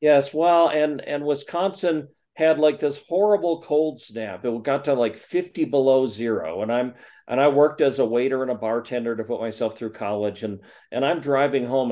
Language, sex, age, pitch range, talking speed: English, male, 40-59, 110-145 Hz, 195 wpm